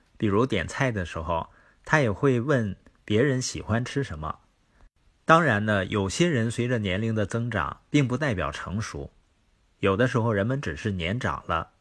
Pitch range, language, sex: 95-135 Hz, Chinese, male